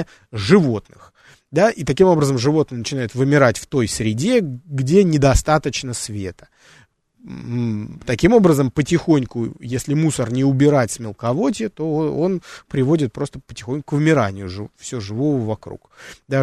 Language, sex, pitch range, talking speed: Russian, male, 115-150 Hz, 130 wpm